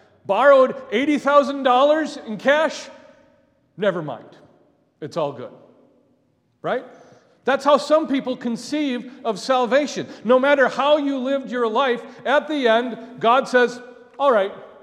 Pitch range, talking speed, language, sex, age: 180-255 Hz, 125 wpm, English, male, 40-59